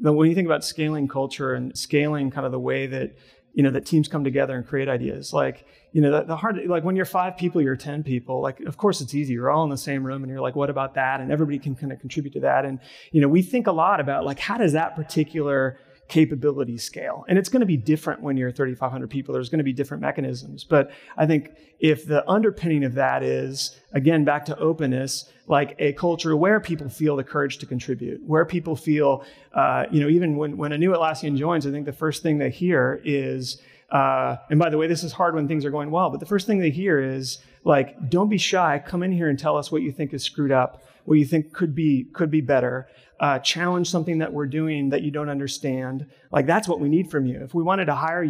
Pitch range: 135-160 Hz